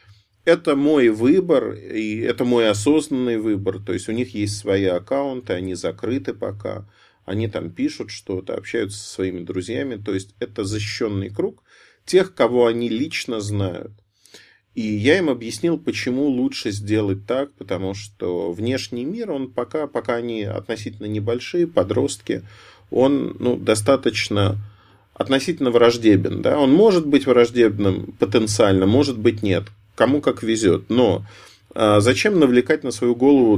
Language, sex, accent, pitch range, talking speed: Russian, male, native, 100-125 Hz, 140 wpm